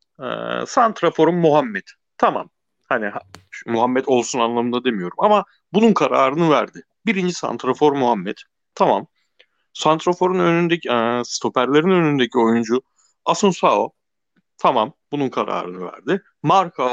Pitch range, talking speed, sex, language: 110-150 Hz, 115 wpm, male, Turkish